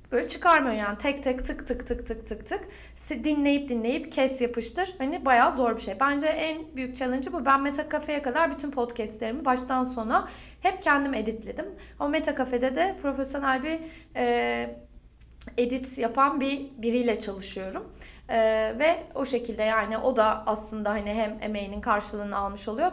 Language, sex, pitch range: Turkish, female, 230-295 Hz